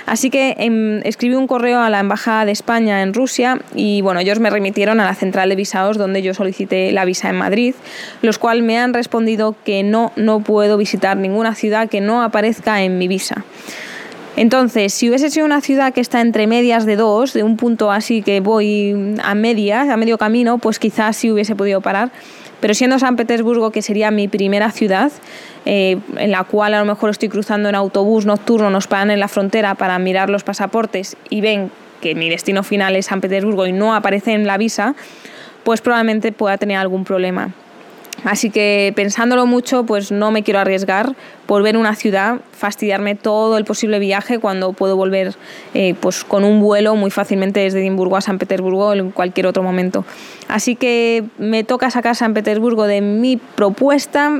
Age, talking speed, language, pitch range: 20-39, 195 wpm, Spanish, 200-230 Hz